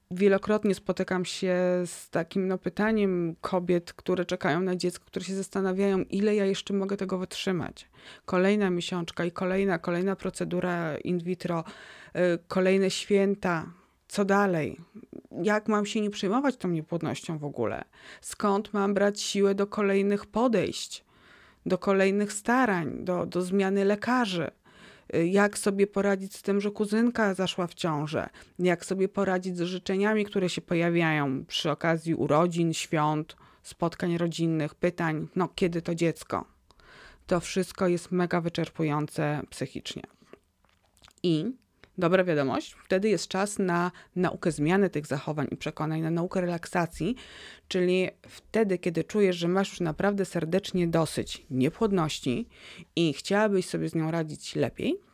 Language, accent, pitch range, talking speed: Polish, native, 170-200 Hz, 135 wpm